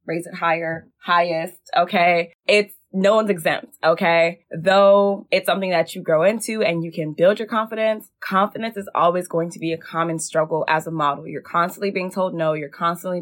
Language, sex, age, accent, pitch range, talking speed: English, female, 20-39, American, 160-190 Hz, 190 wpm